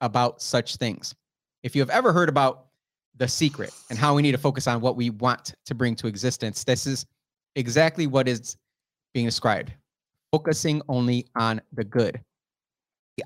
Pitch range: 120-150 Hz